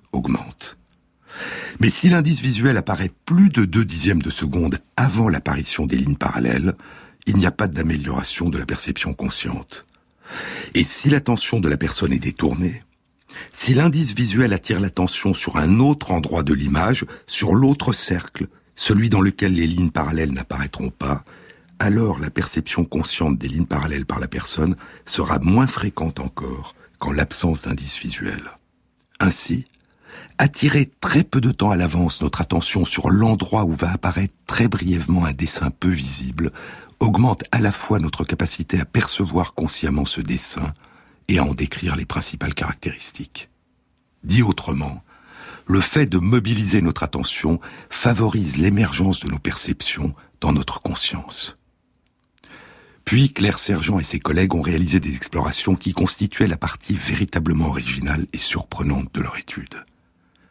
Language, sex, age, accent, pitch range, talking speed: French, male, 60-79, French, 80-110 Hz, 150 wpm